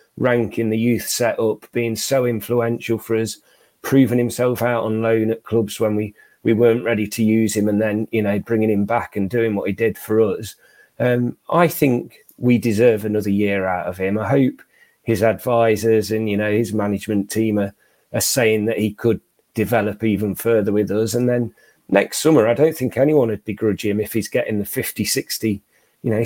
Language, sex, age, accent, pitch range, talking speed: English, male, 40-59, British, 105-120 Hz, 200 wpm